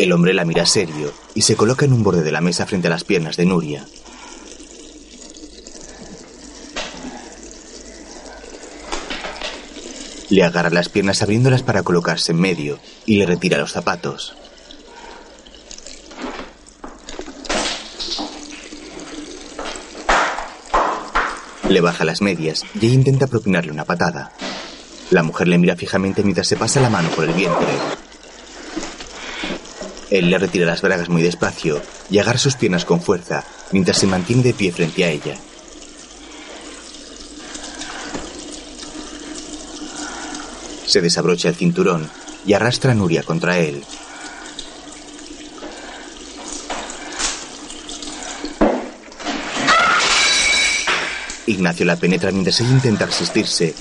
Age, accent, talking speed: 30-49, Spanish, 105 wpm